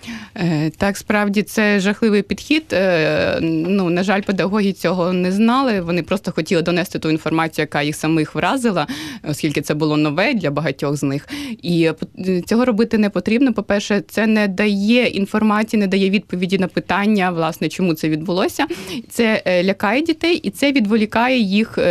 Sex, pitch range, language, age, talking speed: female, 165-210 Hz, Ukrainian, 20-39, 155 wpm